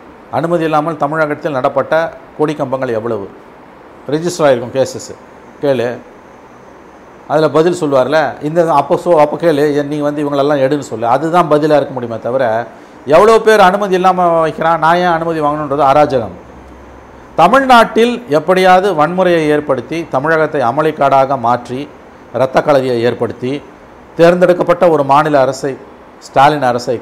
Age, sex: 50-69, male